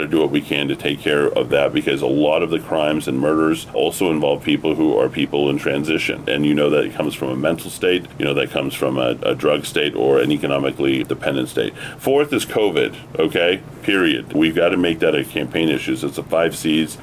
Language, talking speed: English, 240 wpm